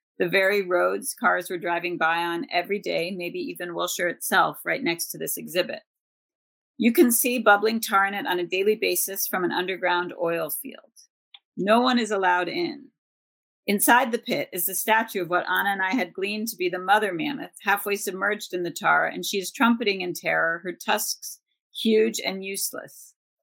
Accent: American